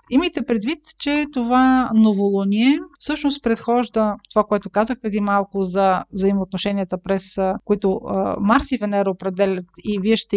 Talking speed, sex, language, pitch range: 135 wpm, female, Bulgarian, 200-250 Hz